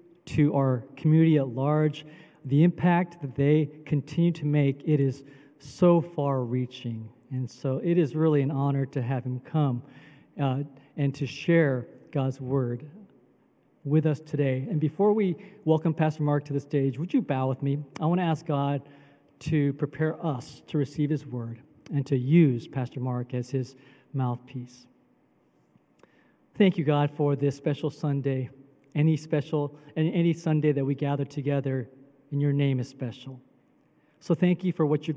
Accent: American